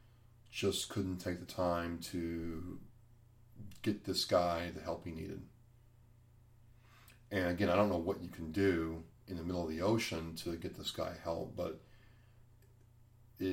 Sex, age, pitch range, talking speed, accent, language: male, 40-59, 85-115 Hz, 155 wpm, American, English